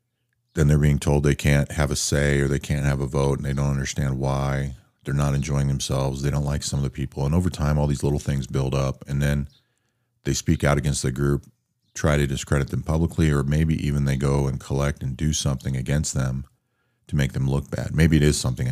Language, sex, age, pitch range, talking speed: English, male, 40-59, 65-75 Hz, 235 wpm